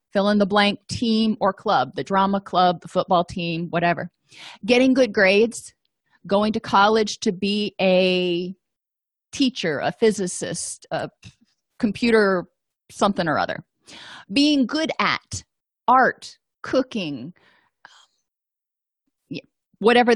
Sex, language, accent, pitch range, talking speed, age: female, English, American, 190-245 Hz, 110 wpm, 30-49